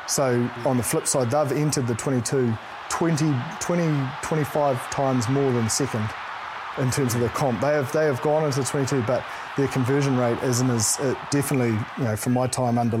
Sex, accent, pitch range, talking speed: male, Australian, 120-140 Hz, 200 wpm